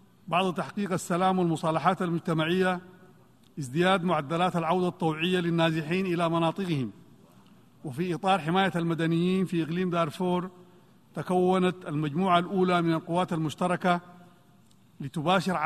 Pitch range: 170-190 Hz